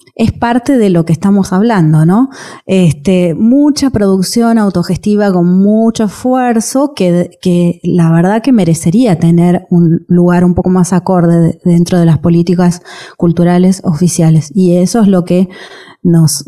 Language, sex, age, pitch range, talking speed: Spanish, female, 20-39, 175-210 Hz, 150 wpm